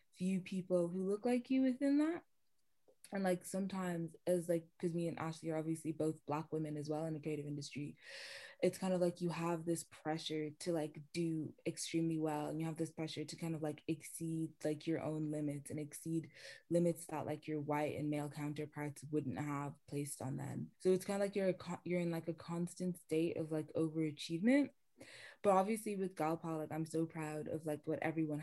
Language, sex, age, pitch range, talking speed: English, female, 20-39, 150-170 Hz, 205 wpm